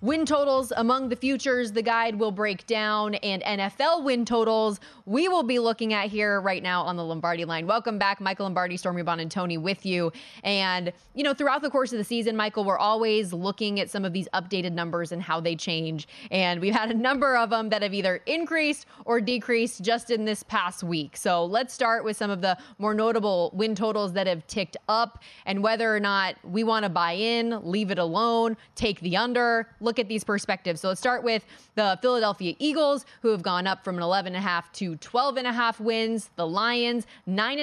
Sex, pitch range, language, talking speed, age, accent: female, 185-230 Hz, English, 210 wpm, 20-39, American